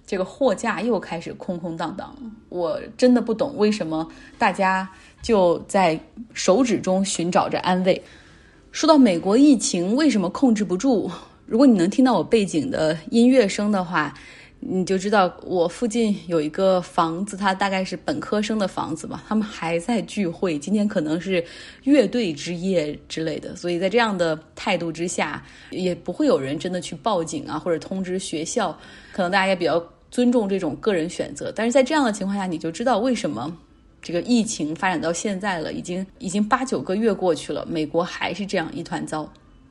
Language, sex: Chinese, female